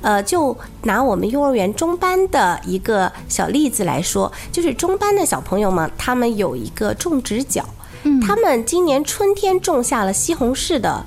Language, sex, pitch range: Chinese, female, 210-315 Hz